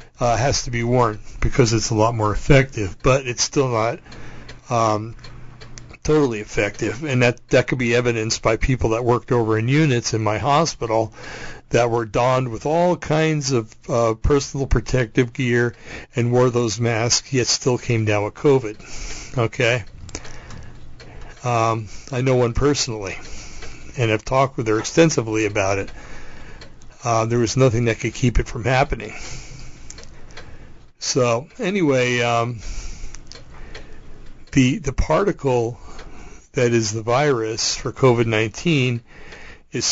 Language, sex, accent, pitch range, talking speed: English, male, American, 110-130 Hz, 140 wpm